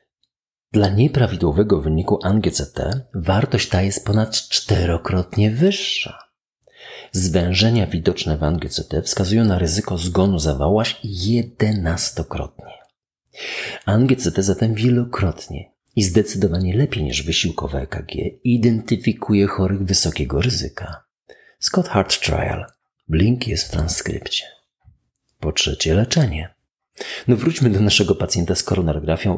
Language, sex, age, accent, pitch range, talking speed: Polish, male, 40-59, native, 85-125 Hz, 100 wpm